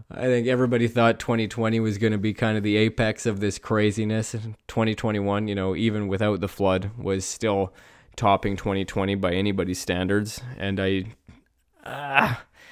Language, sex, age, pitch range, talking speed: English, male, 20-39, 95-115 Hz, 160 wpm